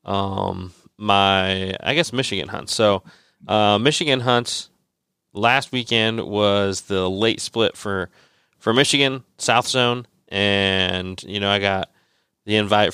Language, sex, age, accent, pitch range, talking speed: English, male, 30-49, American, 95-110 Hz, 130 wpm